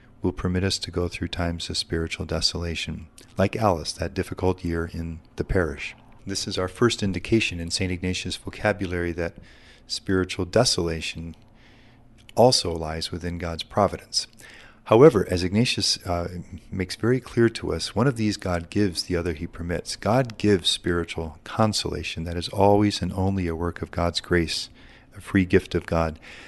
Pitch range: 85-105 Hz